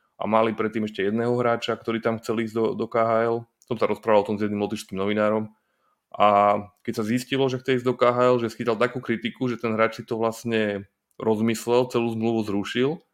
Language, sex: Slovak, male